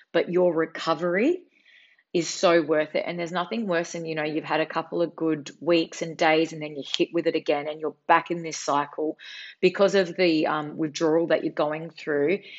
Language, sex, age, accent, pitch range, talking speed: English, female, 30-49, Australian, 155-195 Hz, 215 wpm